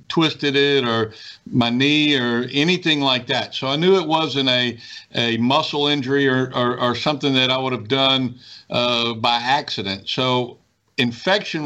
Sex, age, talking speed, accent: male, 50-69, 165 wpm, American